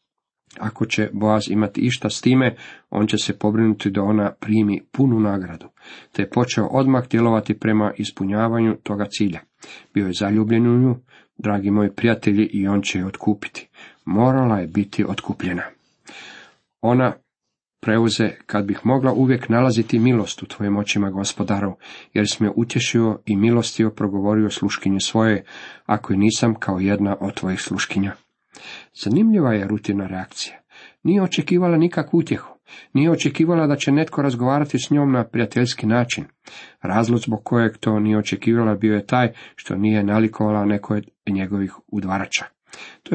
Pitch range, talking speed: 105-125 Hz, 150 wpm